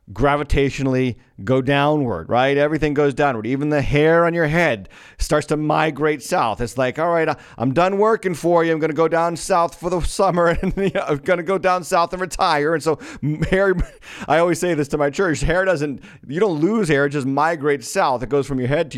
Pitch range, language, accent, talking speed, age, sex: 120-165 Hz, English, American, 220 wpm, 40-59, male